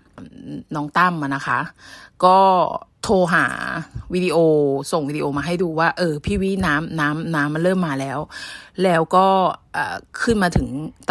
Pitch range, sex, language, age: 145-190 Hz, female, Thai, 30-49